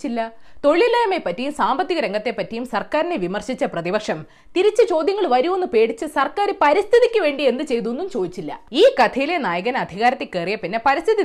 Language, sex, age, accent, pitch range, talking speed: Malayalam, female, 20-39, native, 195-310 Hz, 145 wpm